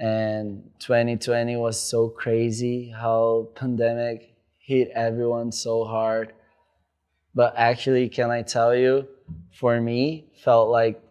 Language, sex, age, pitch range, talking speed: English, male, 20-39, 105-125 Hz, 115 wpm